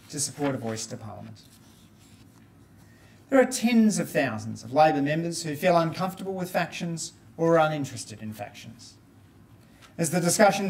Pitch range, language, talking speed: 115-175 Hz, English, 150 wpm